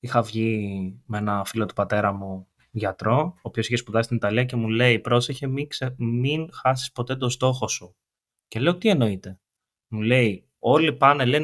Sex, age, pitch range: male, 20-39, 115-135 Hz